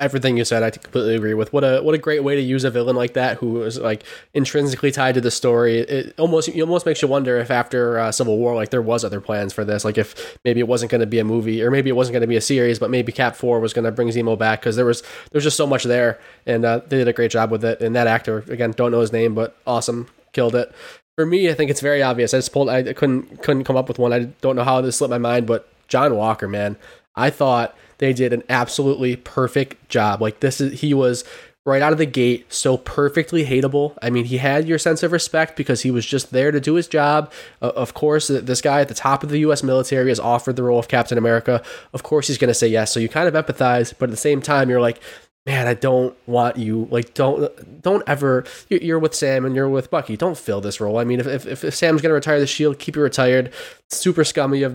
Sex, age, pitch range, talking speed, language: male, 20-39, 120-140 Hz, 270 wpm, English